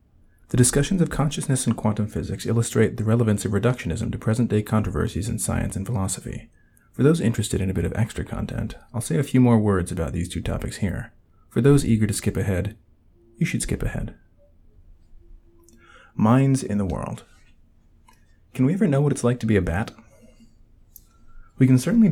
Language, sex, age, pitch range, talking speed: English, male, 30-49, 90-120 Hz, 180 wpm